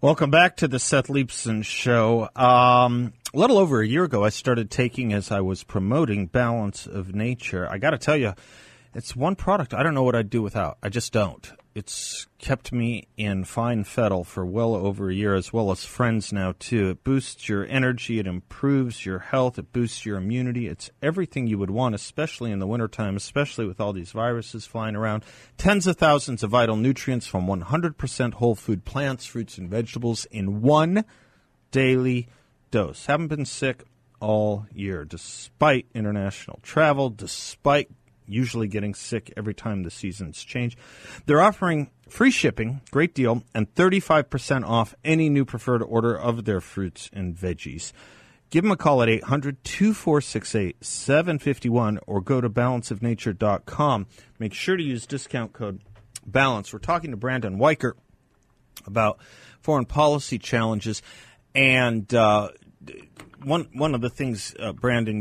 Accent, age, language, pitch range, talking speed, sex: American, 40-59, English, 105-135 Hz, 160 wpm, male